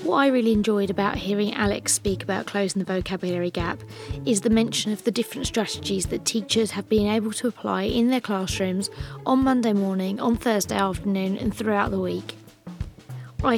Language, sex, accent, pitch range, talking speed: English, female, British, 190-225 Hz, 180 wpm